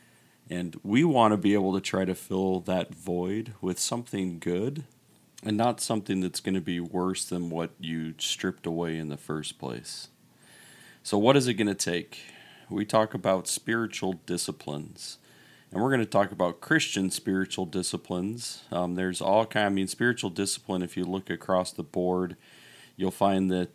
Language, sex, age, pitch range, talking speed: English, male, 40-59, 85-105 Hz, 180 wpm